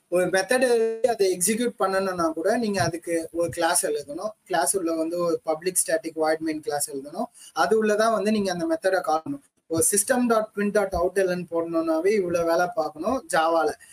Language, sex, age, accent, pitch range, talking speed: Tamil, male, 20-39, native, 165-220 Hz, 170 wpm